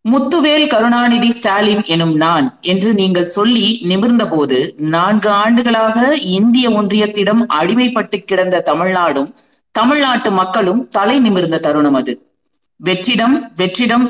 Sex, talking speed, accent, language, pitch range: female, 105 wpm, native, Tamil, 185-235 Hz